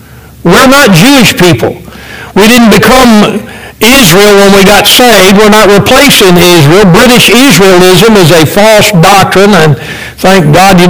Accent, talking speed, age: American, 145 wpm, 60-79